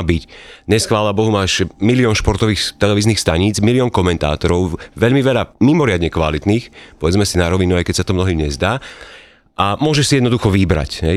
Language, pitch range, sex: Slovak, 85-105 Hz, male